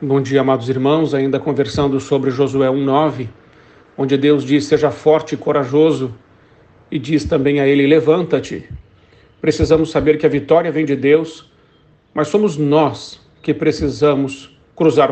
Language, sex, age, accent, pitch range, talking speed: Portuguese, male, 50-69, Brazilian, 135-155 Hz, 145 wpm